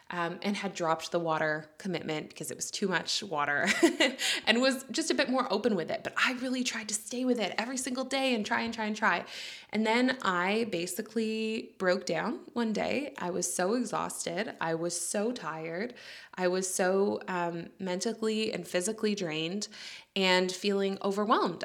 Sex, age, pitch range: female, 20-39, 175-220 Hz